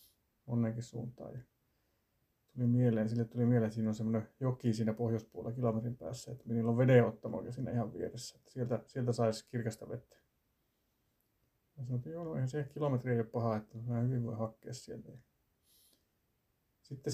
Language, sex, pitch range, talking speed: Finnish, male, 115-135 Hz, 160 wpm